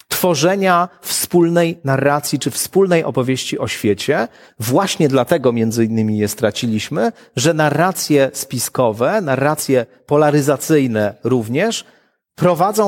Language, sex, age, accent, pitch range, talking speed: Polish, male, 40-59, native, 125-170 Hz, 100 wpm